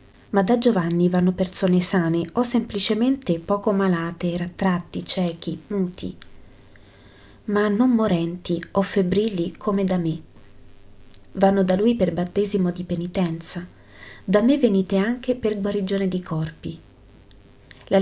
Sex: female